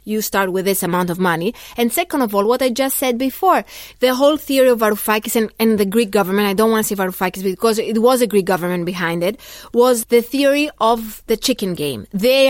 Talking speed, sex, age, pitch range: 230 wpm, female, 30-49, 205-245 Hz